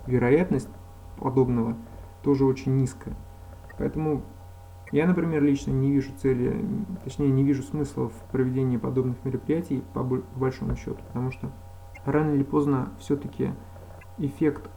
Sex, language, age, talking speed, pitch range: male, Russian, 20-39, 120 wpm, 90-135 Hz